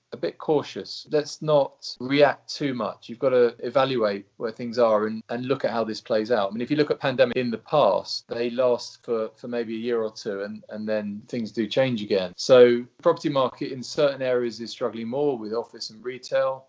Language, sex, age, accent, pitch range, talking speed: English, male, 20-39, British, 110-125 Hz, 225 wpm